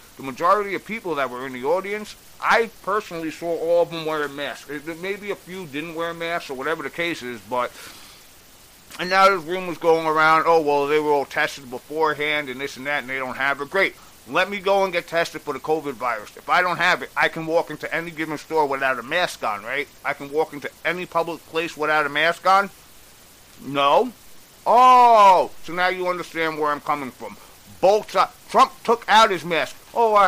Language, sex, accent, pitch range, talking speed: English, male, American, 145-185 Hz, 215 wpm